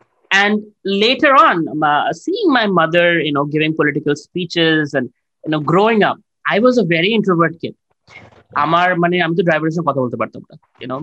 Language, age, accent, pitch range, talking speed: Bengali, 20-39, native, 155-220 Hz, 135 wpm